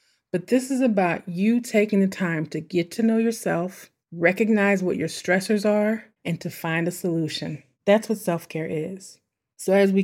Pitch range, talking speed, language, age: 170-210 Hz, 180 wpm, English, 30-49